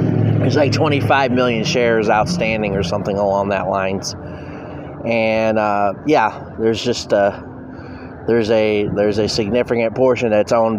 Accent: American